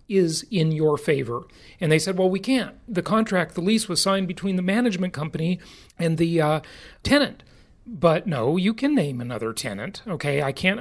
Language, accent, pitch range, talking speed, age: English, American, 140-185 Hz, 190 wpm, 40-59